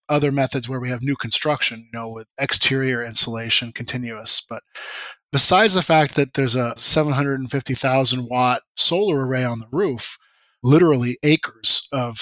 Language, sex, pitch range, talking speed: English, male, 130-155 Hz, 145 wpm